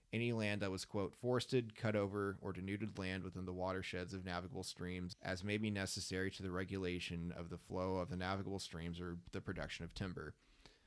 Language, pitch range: English, 90-105 Hz